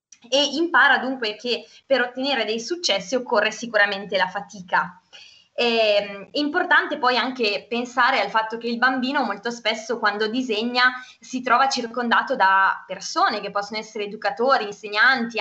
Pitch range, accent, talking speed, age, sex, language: 205-245 Hz, native, 140 wpm, 20-39, female, Italian